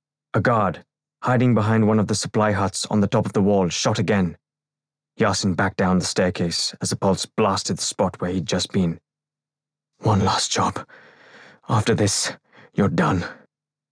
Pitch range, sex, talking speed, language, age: 95-125 Hz, male, 170 wpm, English, 20-39